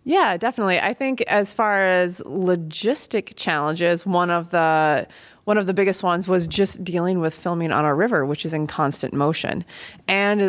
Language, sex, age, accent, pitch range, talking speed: English, female, 30-49, American, 165-195 Hz, 175 wpm